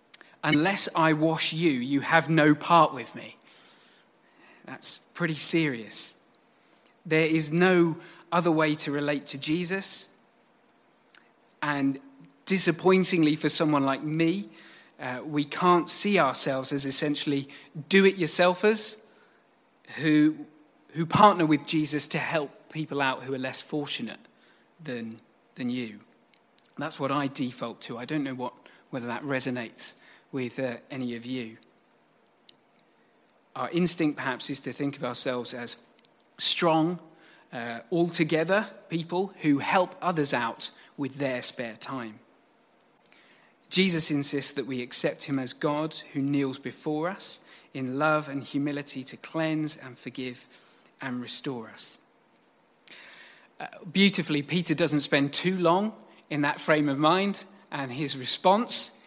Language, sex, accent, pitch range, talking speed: English, male, British, 135-165 Hz, 130 wpm